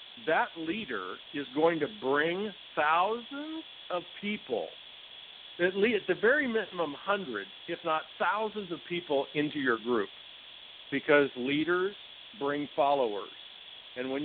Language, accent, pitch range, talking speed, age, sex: English, American, 150-185 Hz, 120 wpm, 50-69, male